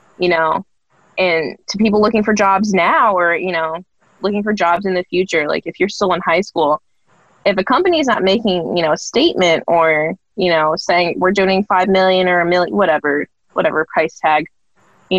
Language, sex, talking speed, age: English, female, 200 wpm, 20-39